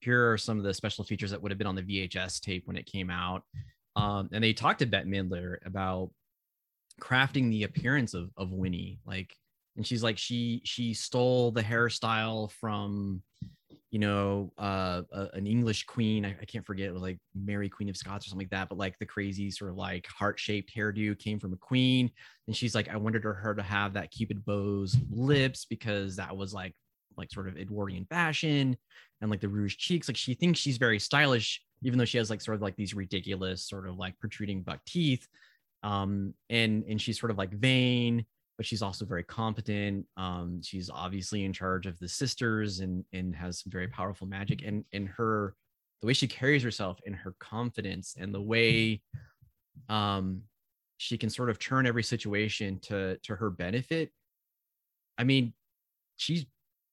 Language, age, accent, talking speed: English, 20-39, American, 195 wpm